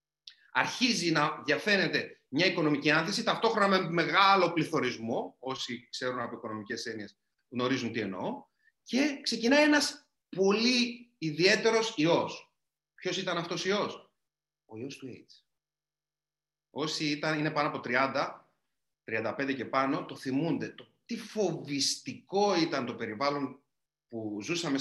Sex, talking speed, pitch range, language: male, 125 wpm, 150-215 Hz, Greek